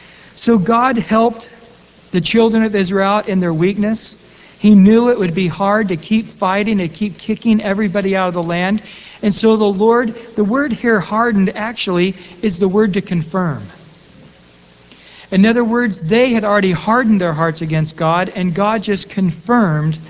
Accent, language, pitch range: American, English, 165-215 Hz